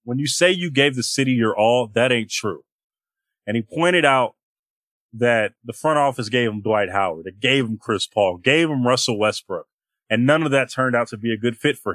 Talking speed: 225 wpm